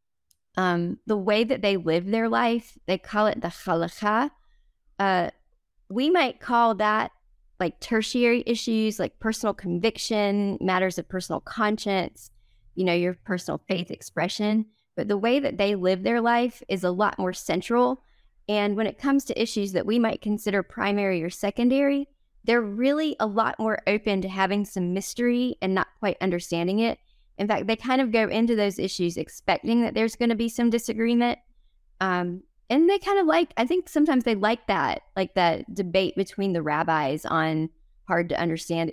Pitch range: 180-230 Hz